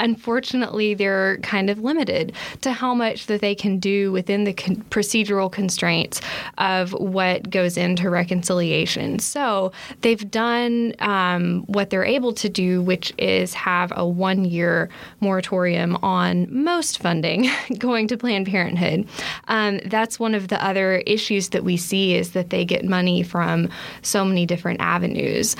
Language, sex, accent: English, female, American